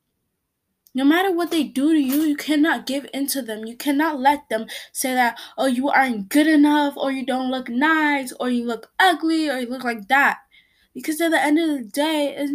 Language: English